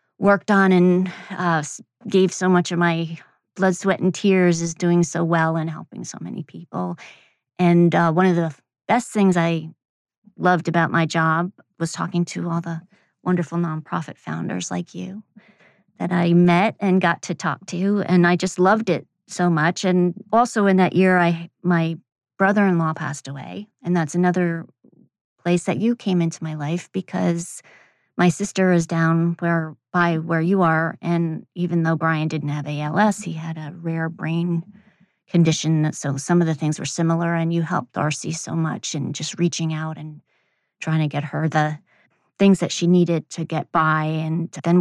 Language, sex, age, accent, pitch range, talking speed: English, female, 30-49, American, 160-185 Hz, 180 wpm